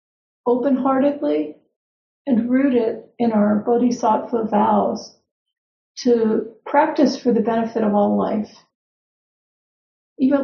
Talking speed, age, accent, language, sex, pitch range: 100 wpm, 50-69, American, English, female, 210-260 Hz